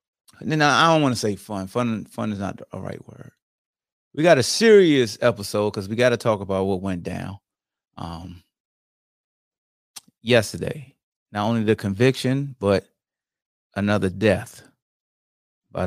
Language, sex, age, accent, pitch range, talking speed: English, male, 30-49, American, 95-130 Hz, 150 wpm